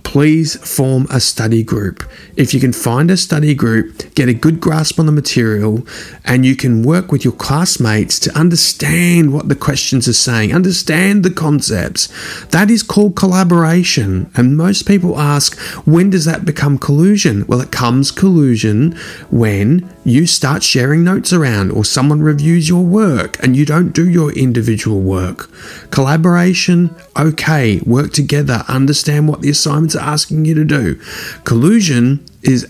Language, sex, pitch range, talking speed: English, male, 120-160 Hz, 155 wpm